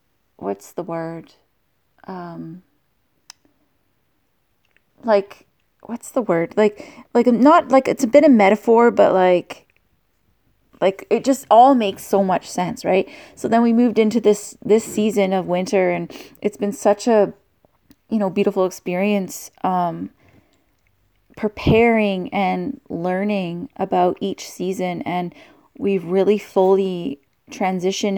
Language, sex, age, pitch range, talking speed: English, female, 20-39, 180-220 Hz, 125 wpm